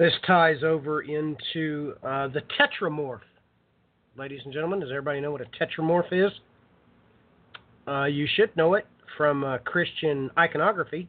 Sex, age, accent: male, 40-59, American